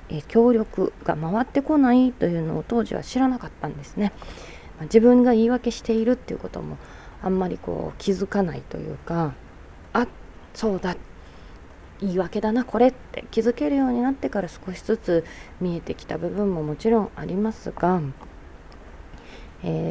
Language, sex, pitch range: Japanese, female, 165-235 Hz